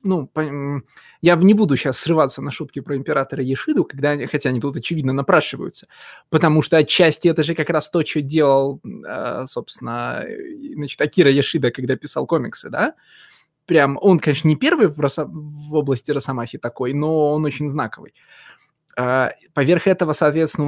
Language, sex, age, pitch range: Russian, male, 20-39, 135-160 Hz